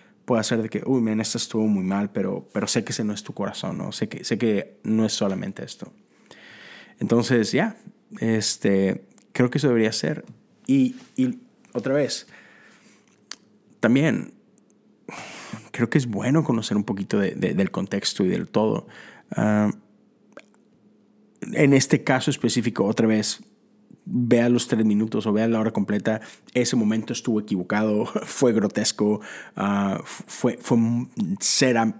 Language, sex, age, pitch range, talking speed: Spanish, male, 30-49, 105-140 Hz, 155 wpm